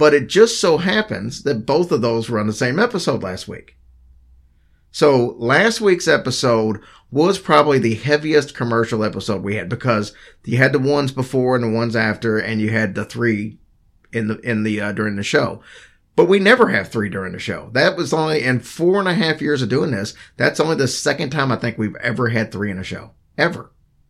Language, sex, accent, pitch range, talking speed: English, male, American, 110-155 Hz, 215 wpm